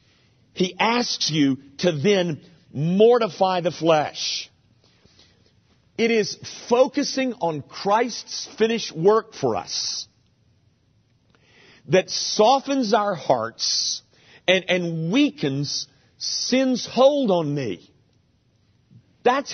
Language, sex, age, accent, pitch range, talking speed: English, male, 50-69, American, 145-230 Hz, 90 wpm